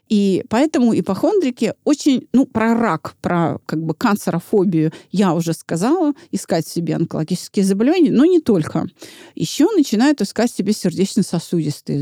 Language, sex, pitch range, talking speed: Russian, female, 170-245 Hz, 130 wpm